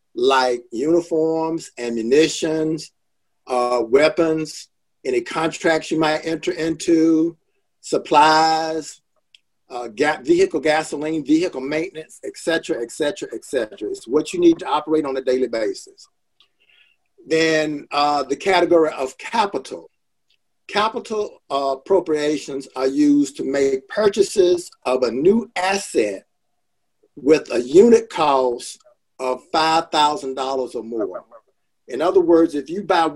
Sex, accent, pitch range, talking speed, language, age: male, American, 140-200 Hz, 115 wpm, English, 50-69